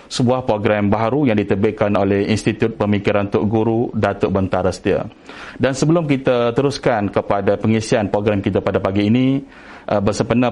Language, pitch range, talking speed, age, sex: Indonesian, 105-125 Hz, 150 wpm, 30-49, male